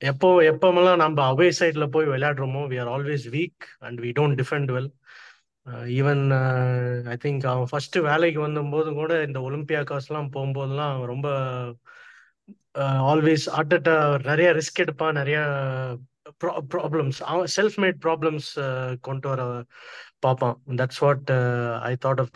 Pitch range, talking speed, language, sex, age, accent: 130-155 Hz, 135 wpm, Tamil, male, 20-39, native